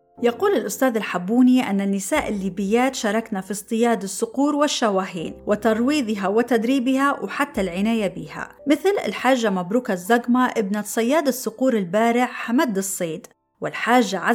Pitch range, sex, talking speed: 200-265 Hz, female, 115 wpm